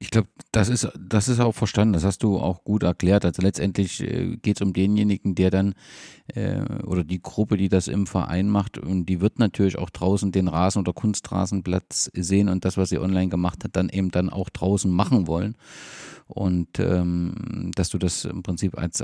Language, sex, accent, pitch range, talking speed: German, male, German, 90-110 Hz, 200 wpm